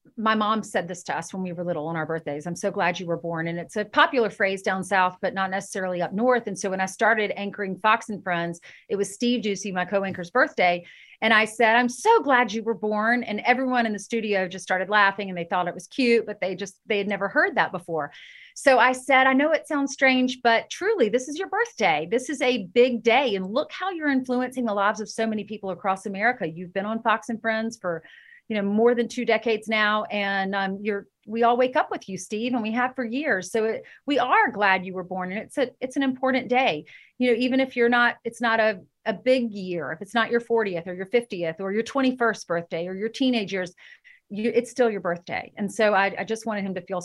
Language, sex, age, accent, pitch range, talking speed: English, female, 40-59, American, 190-245 Hz, 255 wpm